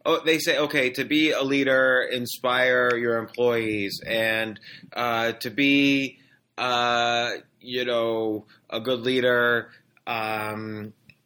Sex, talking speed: male, 115 wpm